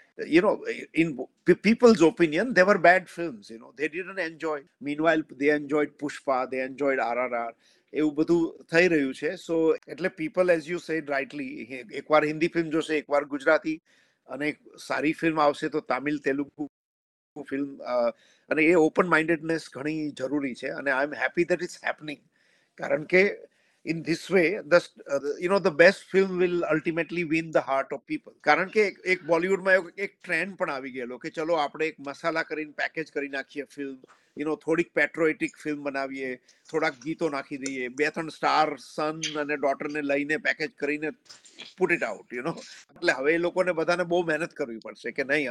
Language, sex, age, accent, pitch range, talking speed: Gujarati, male, 50-69, native, 145-170 Hz, 185 wpm